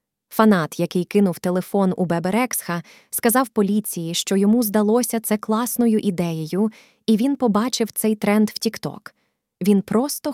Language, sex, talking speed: Ukrainian, female, 135 wpm